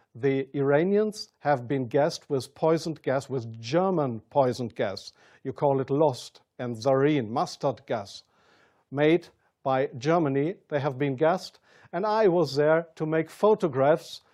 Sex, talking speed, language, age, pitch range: male, 140 wpm, English, 50-69, 140-175 Hz